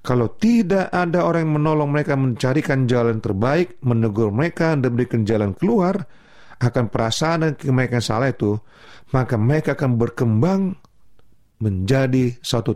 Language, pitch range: Indonesian, 110-155 Hz